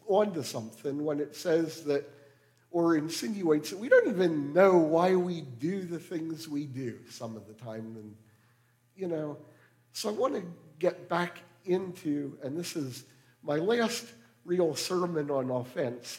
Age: 50-69